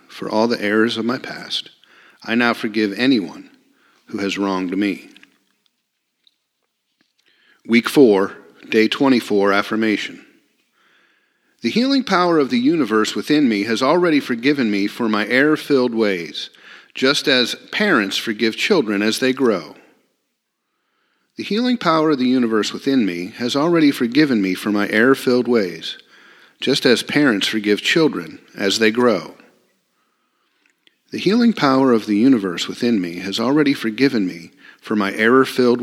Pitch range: 110-155 Hz